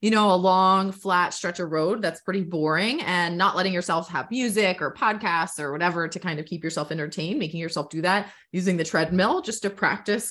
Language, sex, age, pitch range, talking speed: English, female, 20-39, 160-195 Hz, 215 wpm